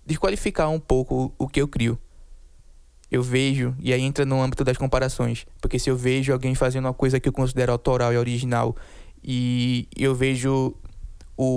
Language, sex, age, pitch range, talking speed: Portuguese, male, 20-39, 120-140 Hz, 175 wpm